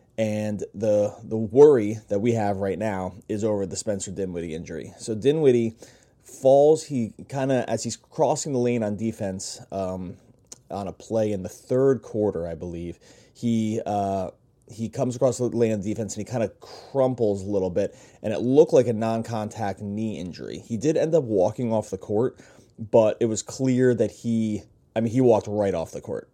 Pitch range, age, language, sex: 100-120 Hz, 20-39, English, male